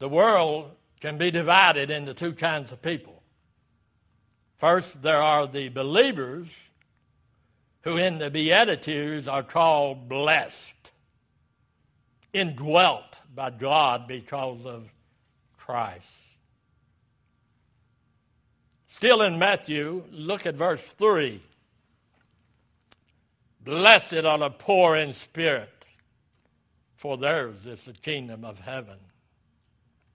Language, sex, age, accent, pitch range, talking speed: English, male, 60-79, American, 130-165 Hz, 95 wpm